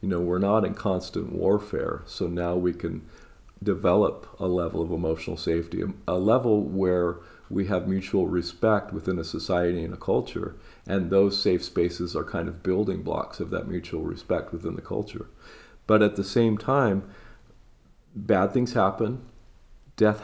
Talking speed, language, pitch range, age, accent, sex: 165 wpm, English, 95-120 Hz, 50-69, American, male